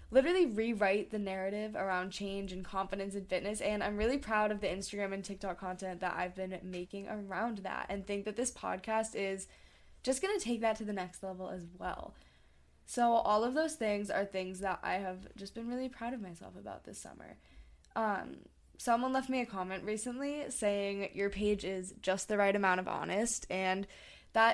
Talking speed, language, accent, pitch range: 200 wpm, English, American, 190-230 Hz